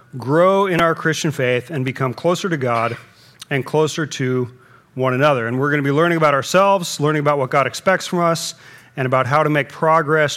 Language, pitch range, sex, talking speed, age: English, 135-180 Hz, male, 210 wpm, 40-59